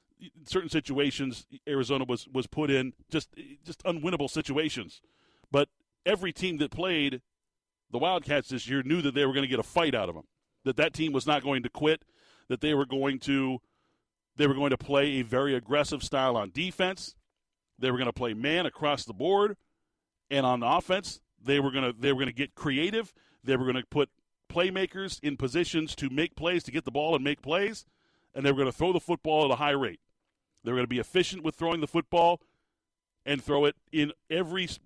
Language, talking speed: English, 215 wpm